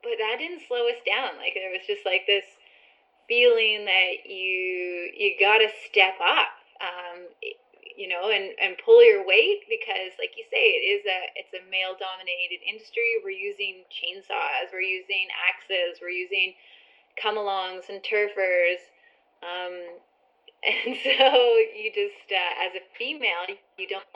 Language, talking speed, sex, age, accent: English, 155 wpm, female, 20-39, American